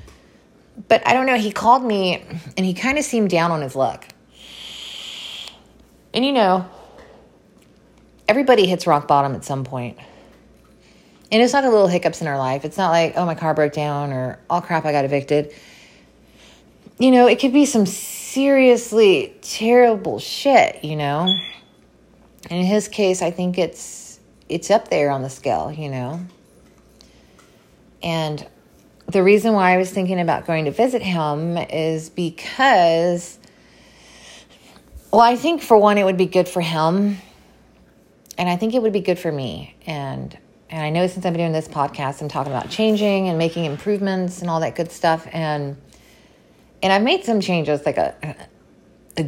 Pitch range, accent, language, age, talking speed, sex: 150-205 Hz, American, English, 30-49, 170 wpm, female